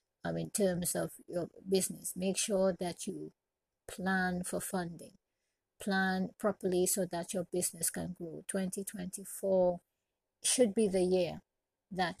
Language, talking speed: English, 130 wpm